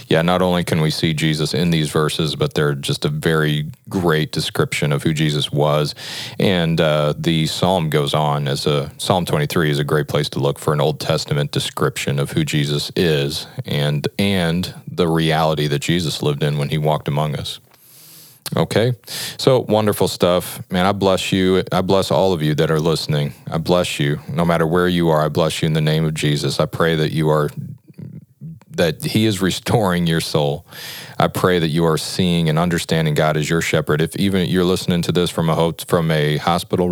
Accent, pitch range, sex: American, 75-95 Hz, male